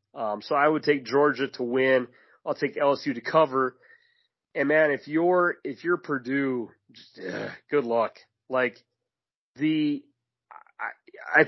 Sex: male